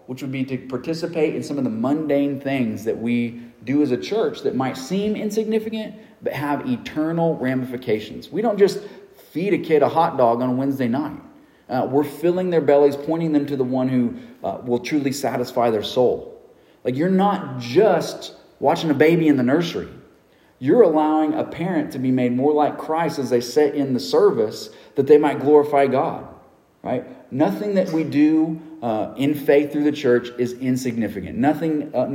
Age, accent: 40-59, American